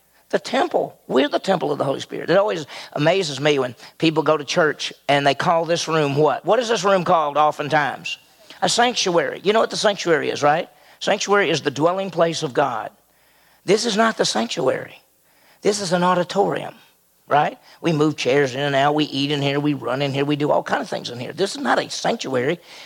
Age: 50-69